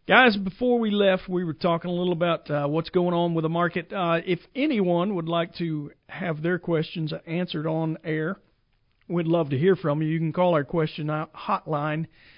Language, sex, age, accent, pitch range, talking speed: English, male, 40-59, American, 155-180 Hz, 200 wpm